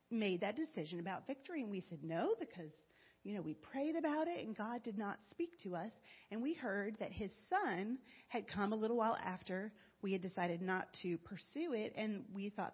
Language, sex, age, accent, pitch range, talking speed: English, female, 40-59, American, 180-235 Hz, 210 wpm